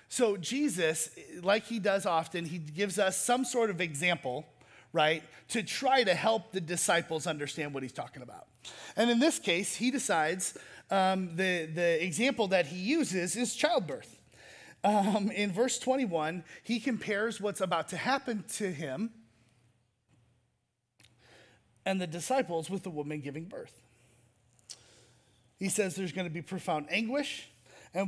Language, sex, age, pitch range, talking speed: English, male, 30-49, 155-205 Hz, 145 wpm